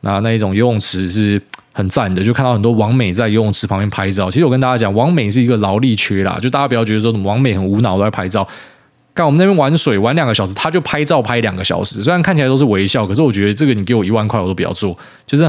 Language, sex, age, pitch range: Chinese, male, 20-39, 105-135 Hz